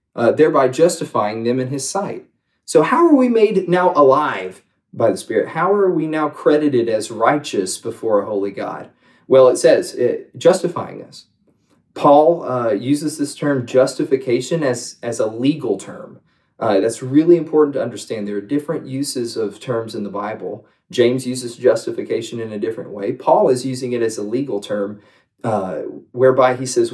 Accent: American